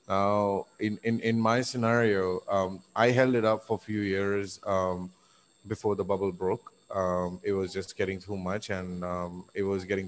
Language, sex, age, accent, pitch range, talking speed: English, male, 30-49, Indian, 95-110 Hz, 190 wpm